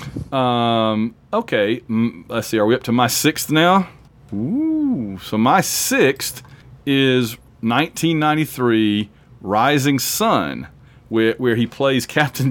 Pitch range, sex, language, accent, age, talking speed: 115-145 Hz, male, English, American, 40-59, 115 wpm